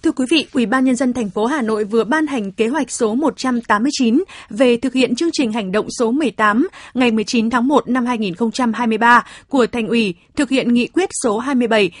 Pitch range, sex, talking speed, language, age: 225-275 Hz, female, 210 wpm, Vietnamese, 20-39